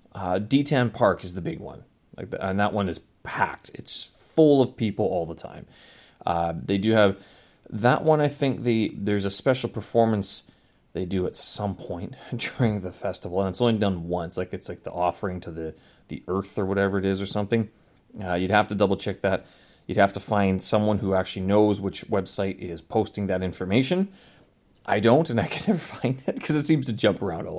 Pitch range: 90-115 Hz